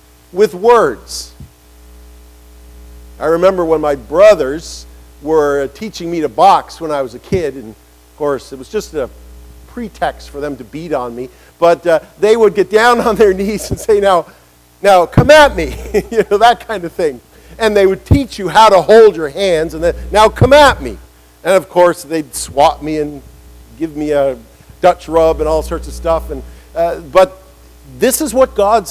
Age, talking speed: 50-69, 195 wpm